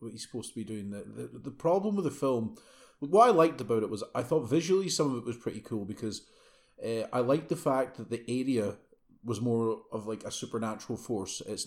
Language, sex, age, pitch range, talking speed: English, male, 30-49, 95-120 Hz, 230 wpm